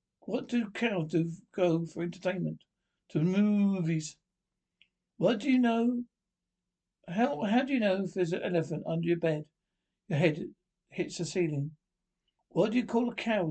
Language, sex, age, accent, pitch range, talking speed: English, male, 60-79, British, 160-195 Hz, 160 wpm